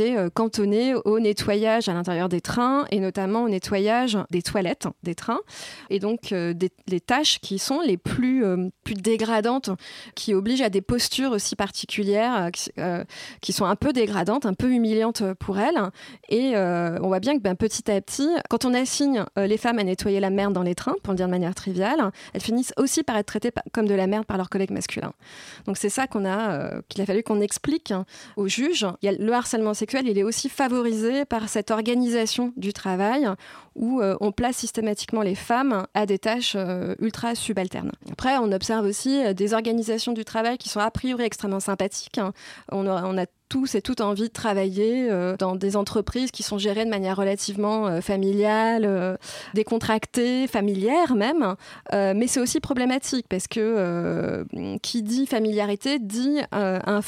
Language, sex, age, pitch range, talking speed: French, female, 20-39, 195-240 Hz, 195 wpm